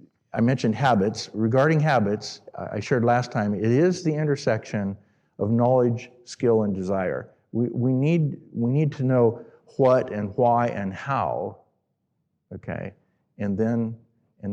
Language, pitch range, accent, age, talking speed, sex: English, 110-140 Hz, American, 50-69, 140 wpm, male